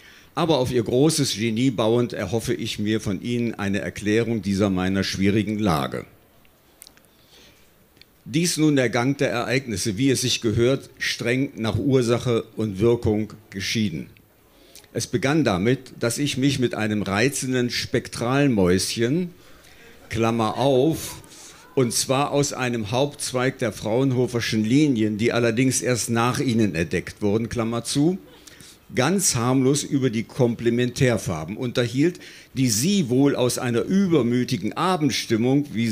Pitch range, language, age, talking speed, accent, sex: 110-135 Hz, German, 50-69, 125 wpm, German, male